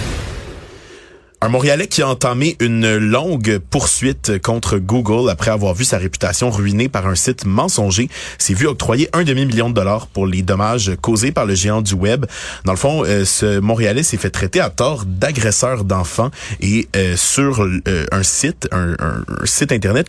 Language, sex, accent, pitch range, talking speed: French, male, Canadian, 95-130 Hz, 165 wpm